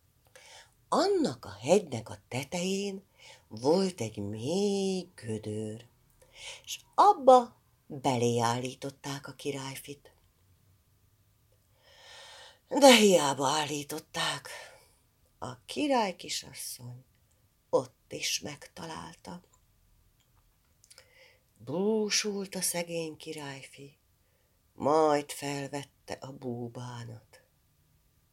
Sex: female